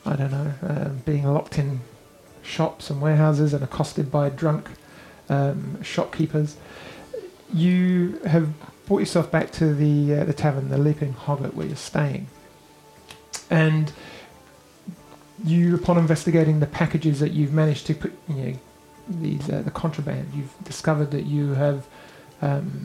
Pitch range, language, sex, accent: 145-165 Hz, English, male, British